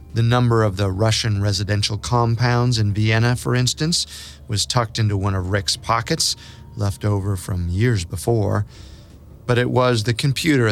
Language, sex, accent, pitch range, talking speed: English, male, American, 105-130 Hz, 155 wpm